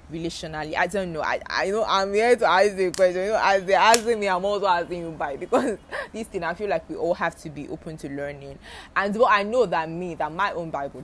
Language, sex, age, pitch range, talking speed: English, female, 20-39, 165-265 Hz, 265 wpm